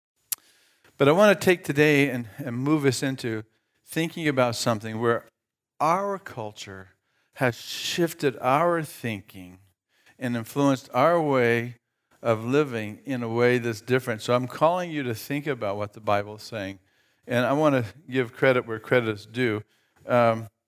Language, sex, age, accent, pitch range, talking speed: English, male, 50-69, American, 105-130 Hz, 155 wpm